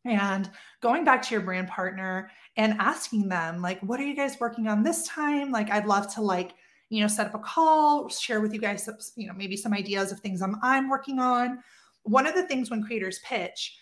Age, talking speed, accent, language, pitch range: 30-49, 225 wpm, American, English, 200-235 Hz